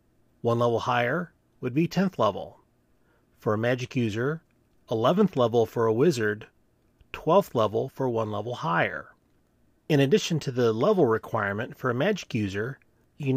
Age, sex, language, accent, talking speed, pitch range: 30-49, male, English, American, 150 wpm, 115-155 Hz